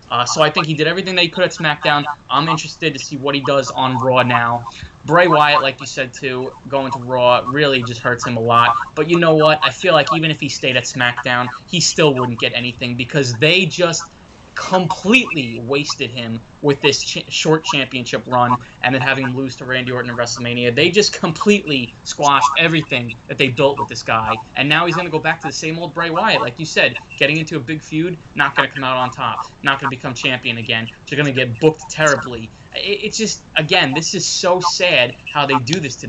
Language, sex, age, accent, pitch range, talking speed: English, male, 20-39, American, 130-160 Hz, 235 wpm